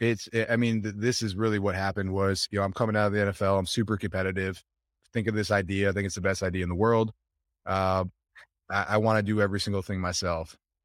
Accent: American